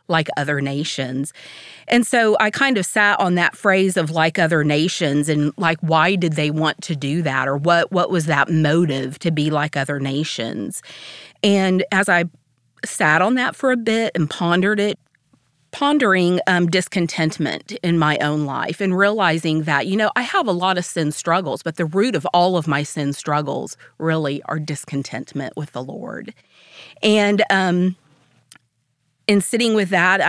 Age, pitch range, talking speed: 40-59, 150-195 Hz, 175 wpm